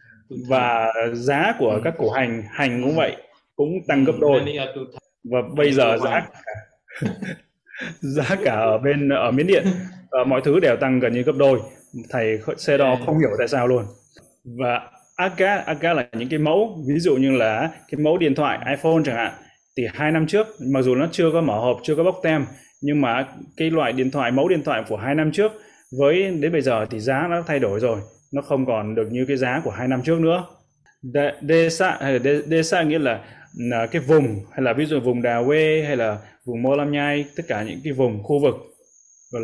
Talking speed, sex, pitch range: 205 wpm, male, 125-155 Hz